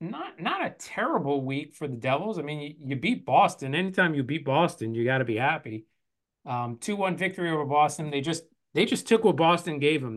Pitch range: 125-155 Hz